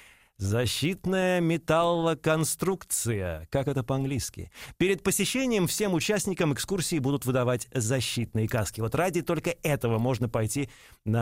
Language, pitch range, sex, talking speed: Russian, 120-190 Hz, male, 110 wpm